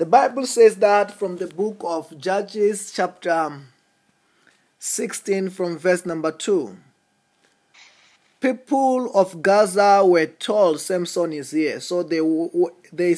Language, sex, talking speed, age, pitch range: English, male, 120 wpm, 20-39, 170-215 Hz